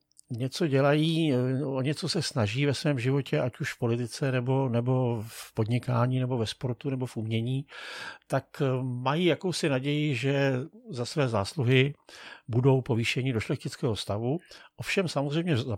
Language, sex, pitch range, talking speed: Czech, male, 120-145 Hz, 150 wpm